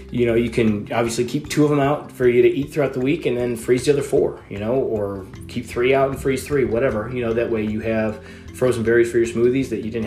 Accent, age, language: American, 20-39, English